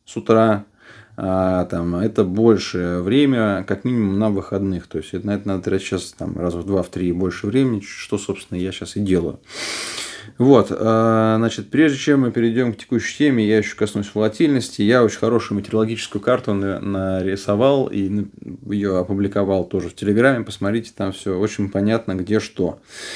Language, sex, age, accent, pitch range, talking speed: Russian, male, 20-39, native, 95-110 Hz, 165 wpm